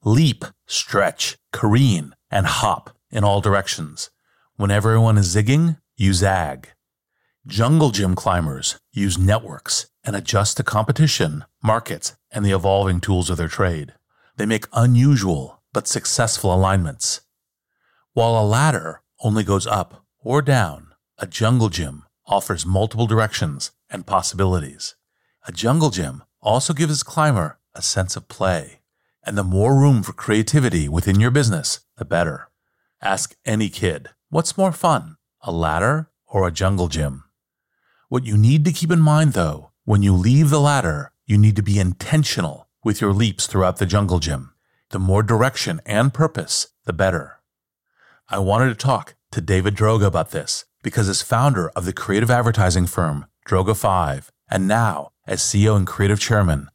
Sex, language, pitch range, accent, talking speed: male, English, 95-125 Hz, American, 150 wpm